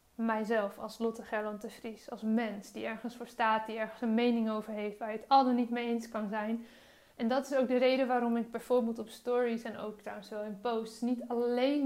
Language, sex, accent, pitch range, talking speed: Dutch, female, Dutch, 220-250 Hz, 235 wpm